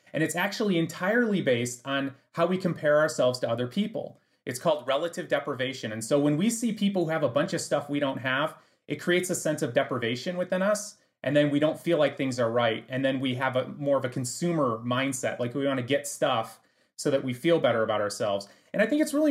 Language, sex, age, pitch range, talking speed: English, male, 30-49, 135-200 Hz, 235 wpm